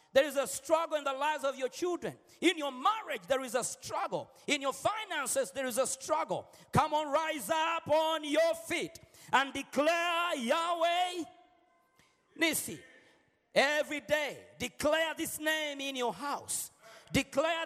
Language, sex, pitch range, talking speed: Swedish, male, 250-310 Hz, 150 wpm